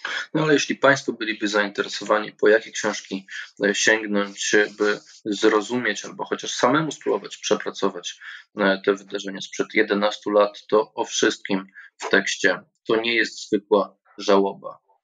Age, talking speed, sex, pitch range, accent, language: 20-39, 130 wpm, male, 100-120 Hz, native, Polish